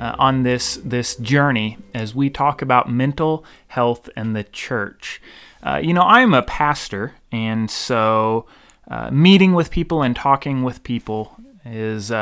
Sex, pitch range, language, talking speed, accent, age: male, 110-150 Hz, English, 155 wpm, American, 30-49